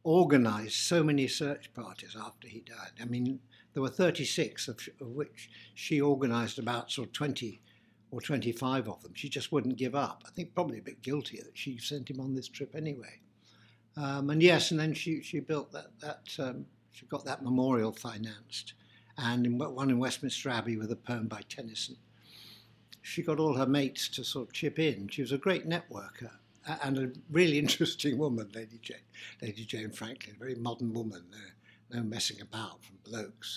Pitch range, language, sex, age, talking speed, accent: 110-140 Hz, English, male, 60-79, 195 wpm, British